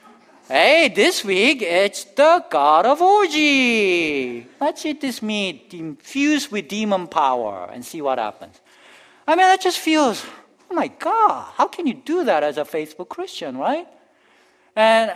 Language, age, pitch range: English, 50-69, 180-275 Hz